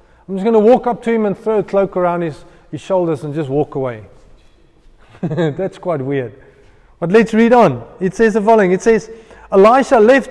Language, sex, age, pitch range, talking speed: English, male, 30-49, 170-230 Hz, 205 wpm